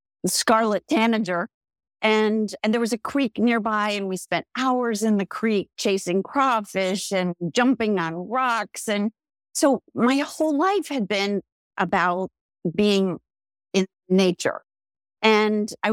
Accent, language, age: American, English, 50-69